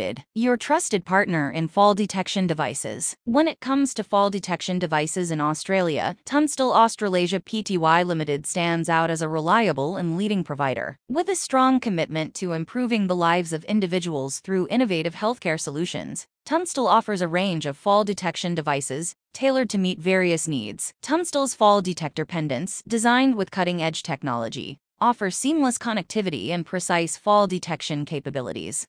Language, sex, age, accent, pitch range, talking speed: English, female, 20-39, American, 160-215 Hz, 145 wpm